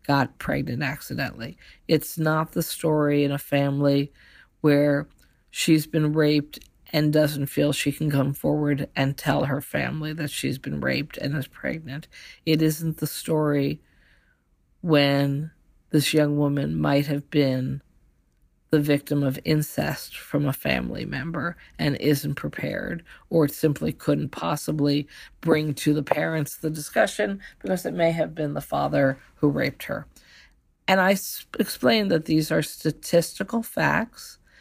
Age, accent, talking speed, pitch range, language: 50-69, American, 140 wpm, 140-160 Hz, English